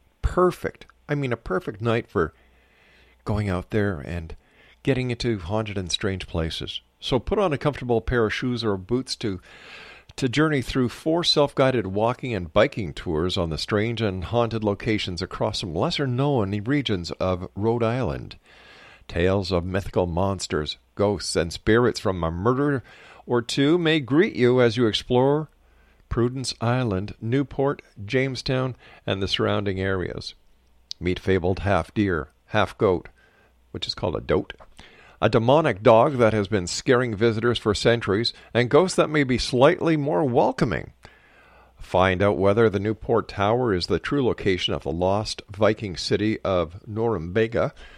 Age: 50-69